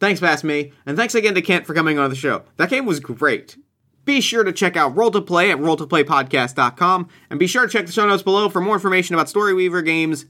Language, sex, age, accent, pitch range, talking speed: English, male, 30-49, American, 145-195 Hz, 250 wpm